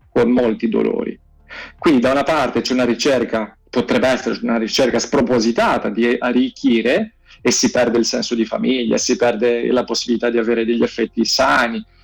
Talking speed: 165 wpm